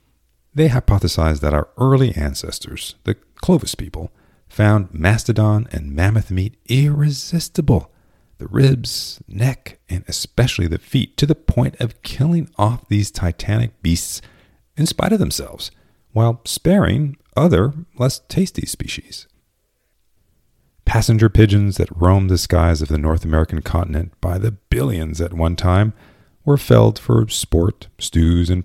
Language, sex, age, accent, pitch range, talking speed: English, male, 40-59, American, 85-125 Hz, 135 wpm